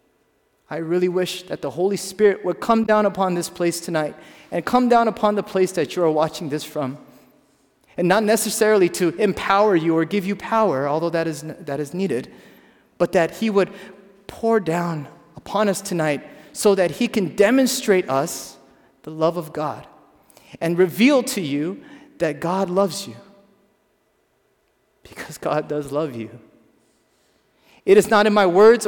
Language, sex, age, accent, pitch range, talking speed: English, male, 30-49, American, 150-205 Hz, 165 wpm